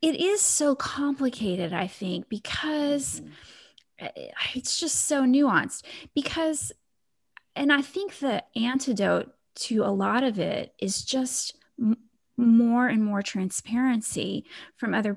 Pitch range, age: 210-270 Hz, 30-49